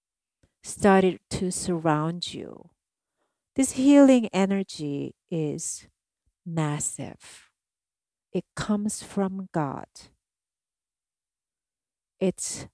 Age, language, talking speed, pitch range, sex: 50-69, English, 65 wpm, 145-185 Hz, female